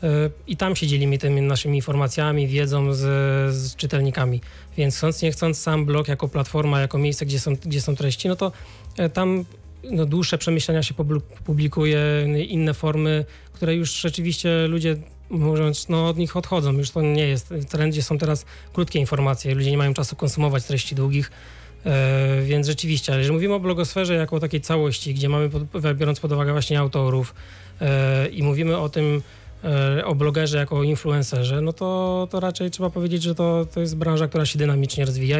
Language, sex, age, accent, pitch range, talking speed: Polish, male, 20-39, native, 140-160 Hz, 175 wpm